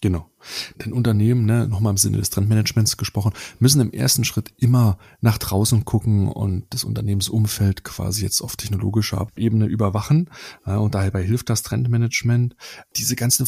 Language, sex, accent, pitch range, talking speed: German, male, German, 100-115 Hz, 145 wpm